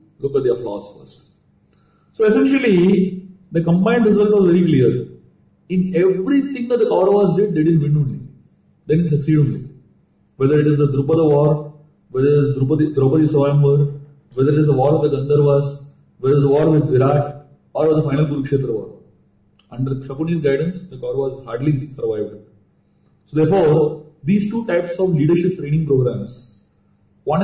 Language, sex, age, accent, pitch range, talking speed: Hindi, male, 40-59, native, 135-175 Hz, 165 wpm